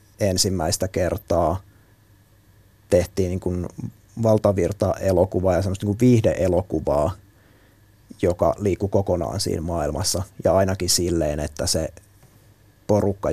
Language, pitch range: Finnish, 90-105 Hz